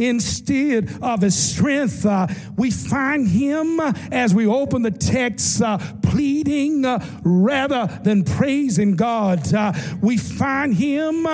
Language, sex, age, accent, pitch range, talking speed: English, male, 50-69, American, 200-275 Hz, 125 wpm